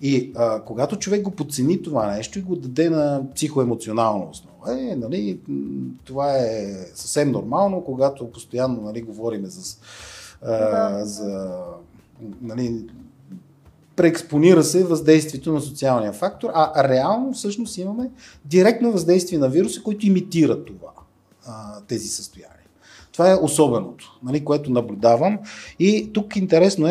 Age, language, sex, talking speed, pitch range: 30-49, Bulgarian, male, 125 wpm, 115-170 Hz